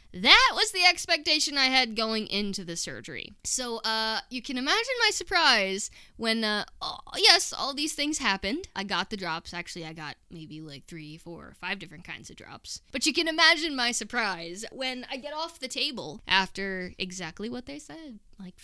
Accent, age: American, 20-39